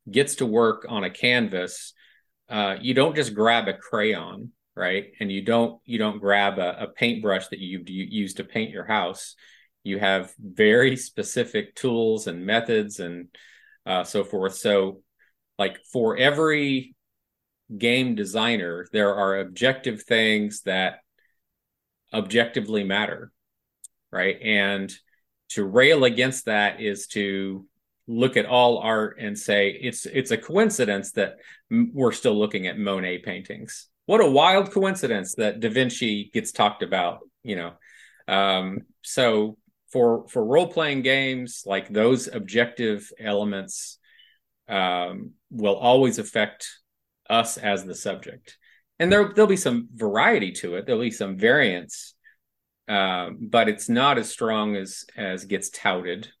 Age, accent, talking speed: 40-59, American, 140 wpm